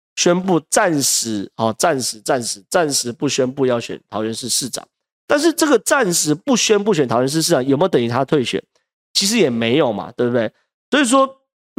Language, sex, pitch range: Chinese, male, 125-170 Hz